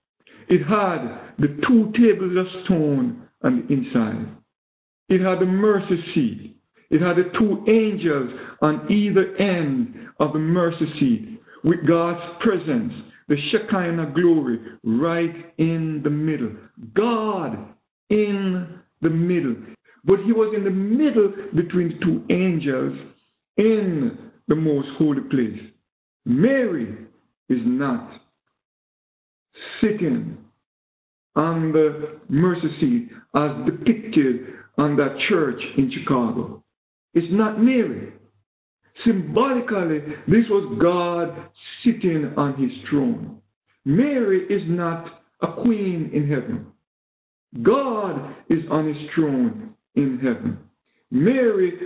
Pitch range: 150-220 Hz